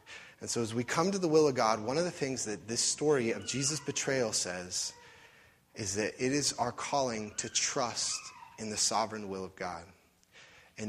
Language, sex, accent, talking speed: English, male, American, 200 wpm